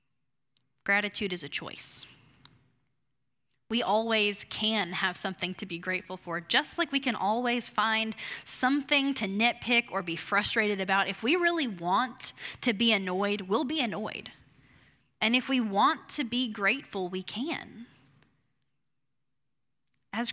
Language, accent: English, American